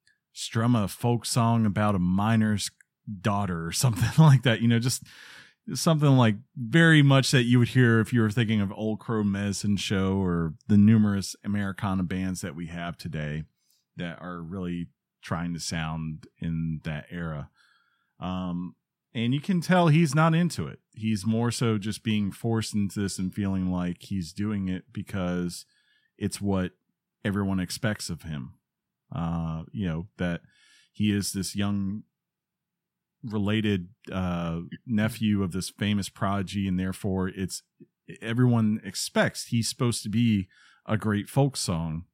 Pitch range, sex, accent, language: 90-115 Hz, male, American, English